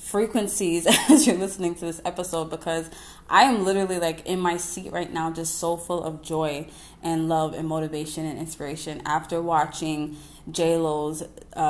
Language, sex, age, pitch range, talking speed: English, female, 20-39, 160-185 Hz, 160 wpm